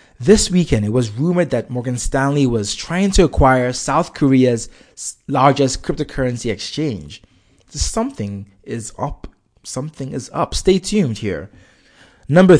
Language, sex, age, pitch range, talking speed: English, male, 20-39, 110-155 Hz, 130 wpm